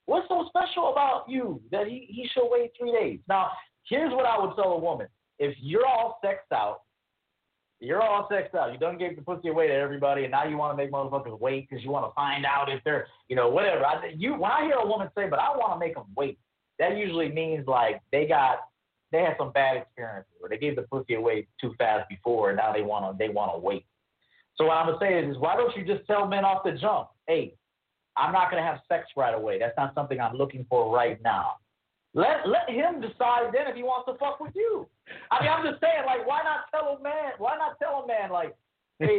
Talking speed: 250 wpm